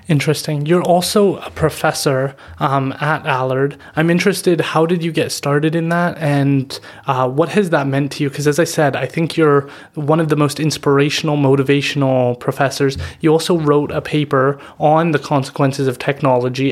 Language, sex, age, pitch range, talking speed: English, male, 30-49, 135-155 Hz, 175 wpm